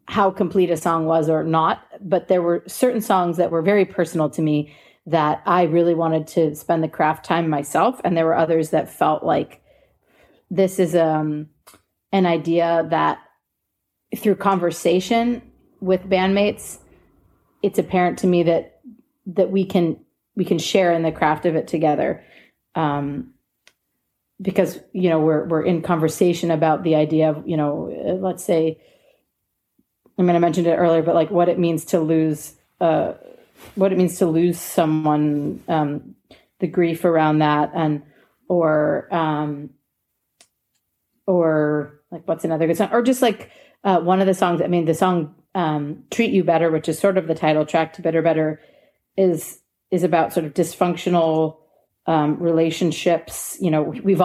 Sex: female